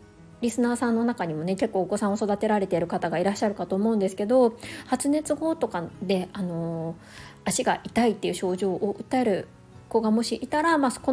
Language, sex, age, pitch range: Japanese, female, 20-39, 190-255 Hz